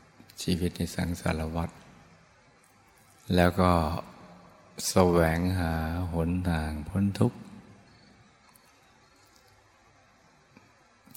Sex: male